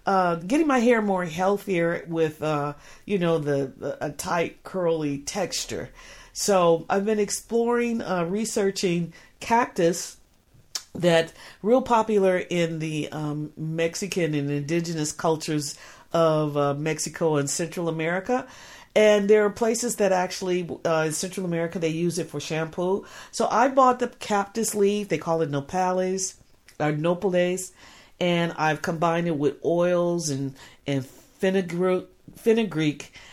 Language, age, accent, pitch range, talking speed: English, 50-69, American, 165-210 Hz, 135 wpm